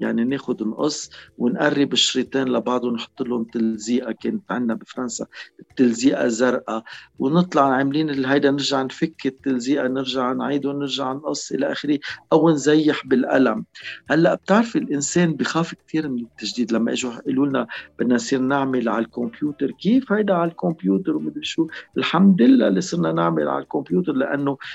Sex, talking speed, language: male, 145 wpm, Arabic